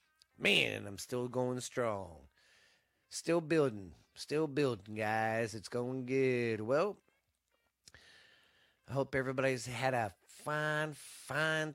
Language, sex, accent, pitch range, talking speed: English, male, American, 110-135 Hz, 105 wpm